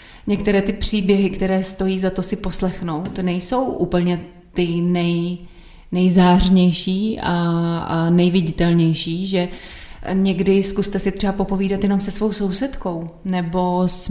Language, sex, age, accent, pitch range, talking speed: Czech, female, 30-49, native, 175-190 Hz, 120 wpm